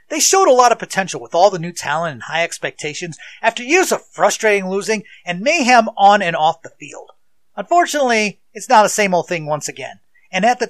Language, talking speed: English, 215 wpm